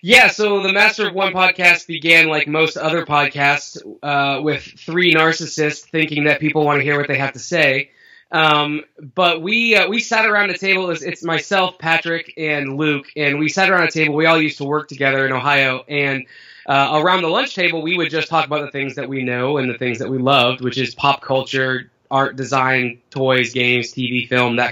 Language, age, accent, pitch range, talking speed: English, 20-39, American, 135-165 Hz, 220 wpm